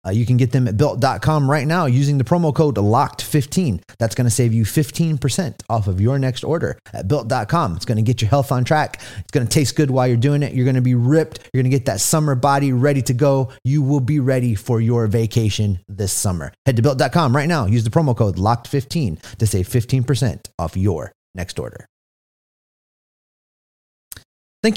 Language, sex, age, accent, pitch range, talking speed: English, male, 30-49, American, 110-150 Hz, 210 wpm